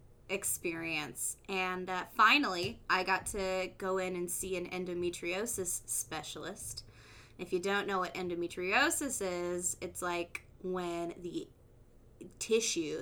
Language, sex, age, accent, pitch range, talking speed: English, female, 20-39, American, 175-215 Hz, 120 wpm